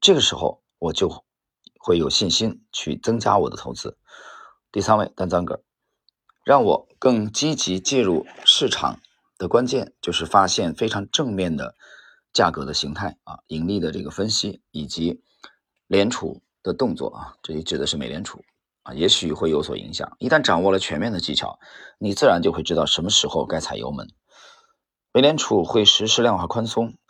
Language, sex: Chinese, male